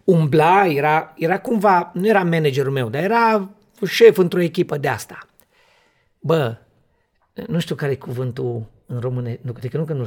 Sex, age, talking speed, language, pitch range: male, 40-59, 160 wpm, Romanian, 125-180 Hz